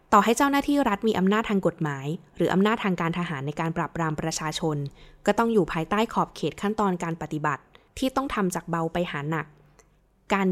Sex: female